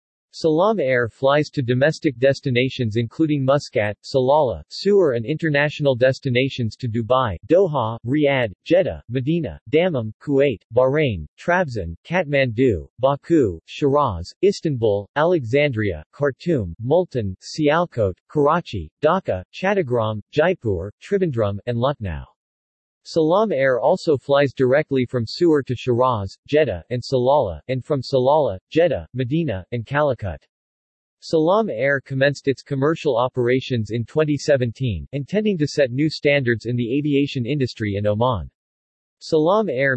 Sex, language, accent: male, English, American